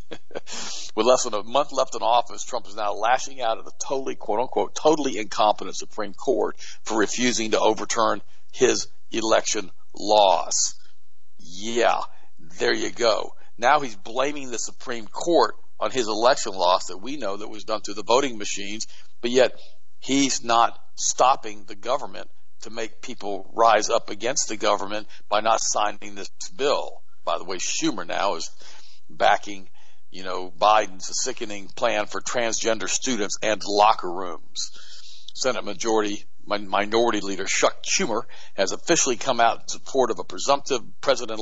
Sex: male